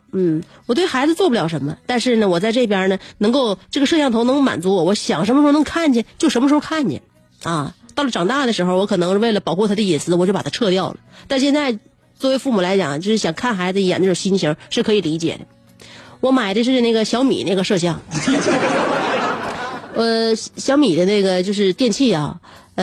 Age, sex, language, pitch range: 30-49, female, Chinese, 185-245 Hz